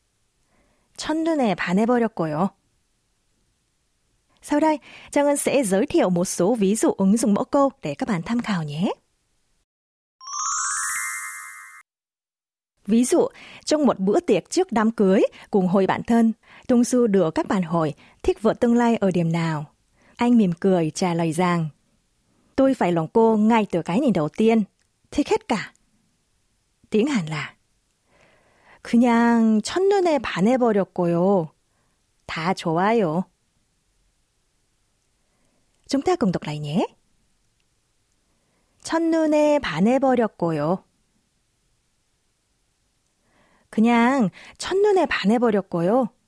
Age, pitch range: 20-39, 175-240 Hz